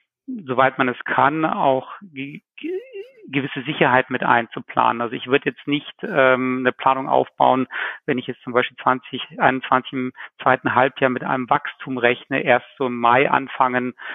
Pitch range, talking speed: 125-145 Hz, 160 wpm